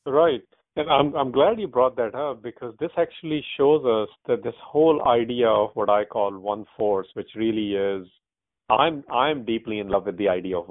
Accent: Indian